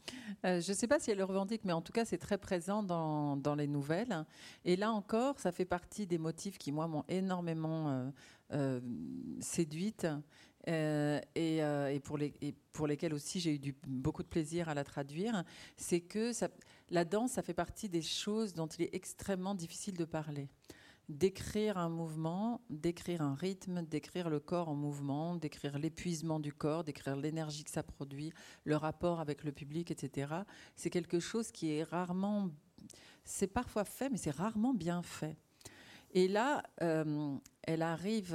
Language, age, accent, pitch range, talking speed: French, 50-69, French, 150-190 Hz, 180 wpm